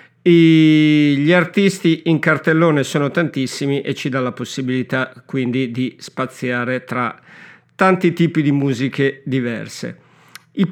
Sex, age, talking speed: male, 50-69, 120 wpm